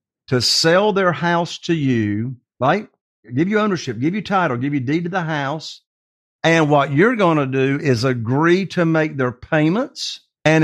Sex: male